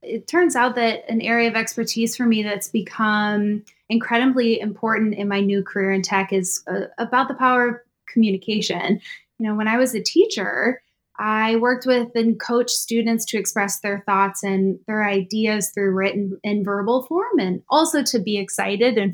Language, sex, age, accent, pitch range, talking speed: English, female, 20-39, American, 205-245 Hz, 180 wpm